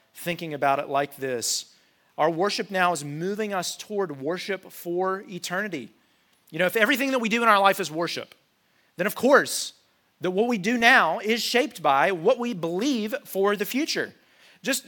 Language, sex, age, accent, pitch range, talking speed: English, male, 40-59, American, 160-210 Hz, 180 wpm